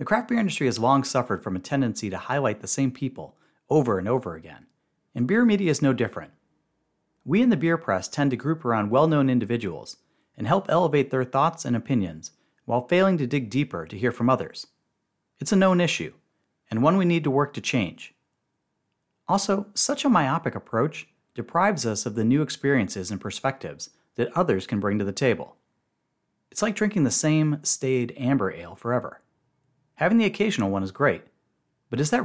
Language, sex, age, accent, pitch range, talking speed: English, male, 30-49, American, 110-155 Hz, 190 wpm